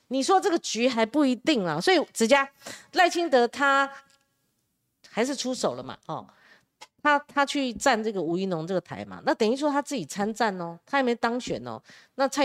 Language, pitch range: Chinese, 185-270 Hz